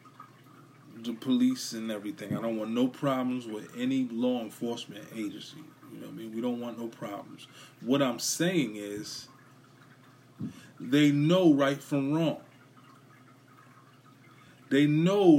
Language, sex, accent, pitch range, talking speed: English, male, American, 125-150 Hz, 135 wpm